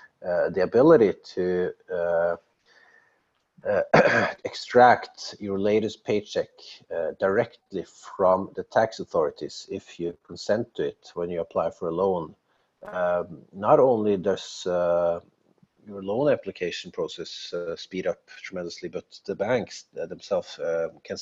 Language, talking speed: Swedish, 135 wpm